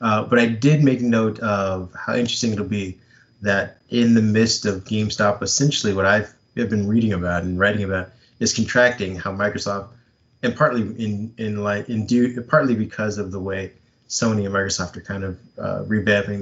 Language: English